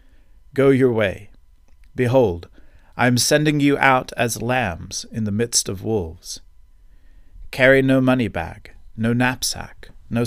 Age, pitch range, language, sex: 40-59, 85-130 Hz, English, male